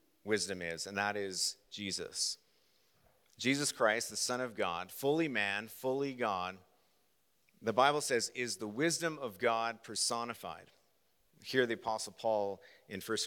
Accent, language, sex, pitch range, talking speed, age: American, English, male, 100-130 Hz, 140 wpm, 40-59